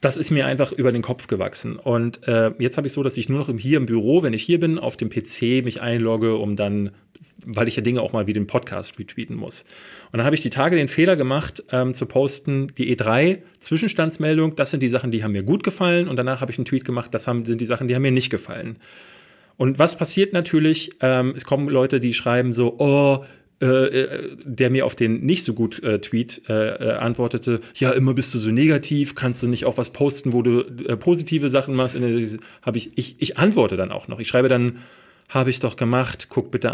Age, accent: 40-59, German